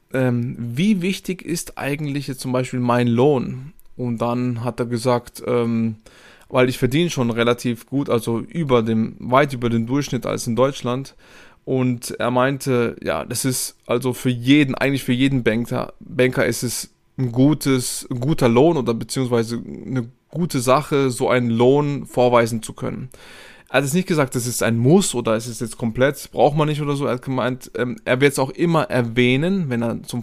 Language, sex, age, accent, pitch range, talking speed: German, male, 20-39, German, 120-135 Hz, 190 wpm